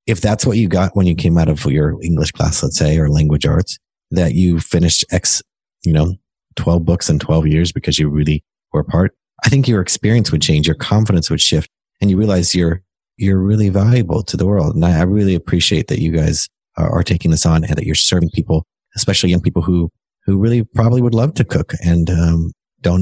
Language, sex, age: English, male, 30-49